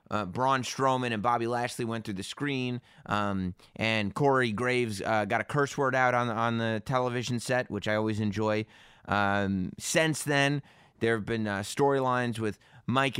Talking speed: 175 wpm